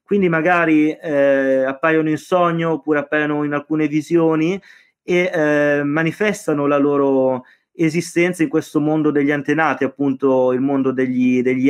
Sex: male